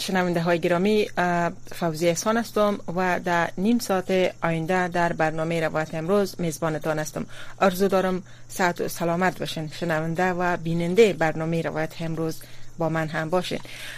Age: 30-49